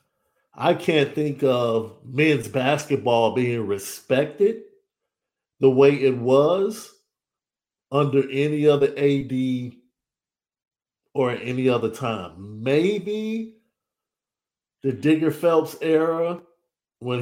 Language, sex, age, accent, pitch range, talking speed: English, male, 50-69, American, 120-150 Hz, 95 wpm